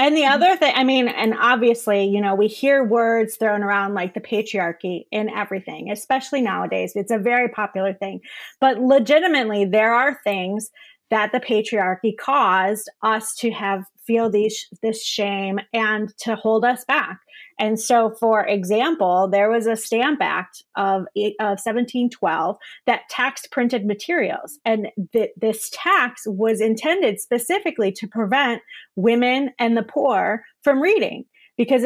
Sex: female